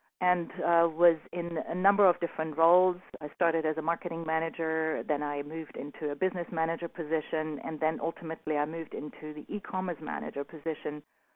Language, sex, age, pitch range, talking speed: English, female, 40-59, 150-180 Hz, 175 wpm